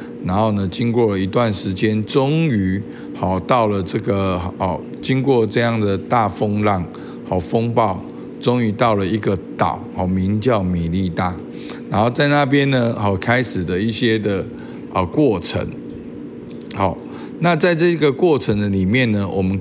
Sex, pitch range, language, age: male, 90-120 Hz, Chinese, 50-69